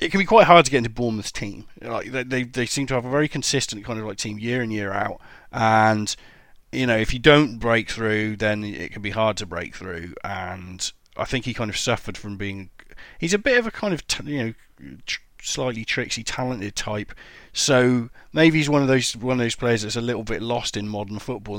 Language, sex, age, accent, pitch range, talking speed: English, male, 30-49, British, 105-135 Hz, 235 wpm